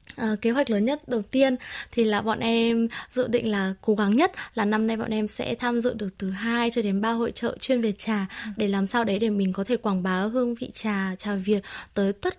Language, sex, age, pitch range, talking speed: Vietnamese, female, 20-39, 205-255 Hz, 255 wpm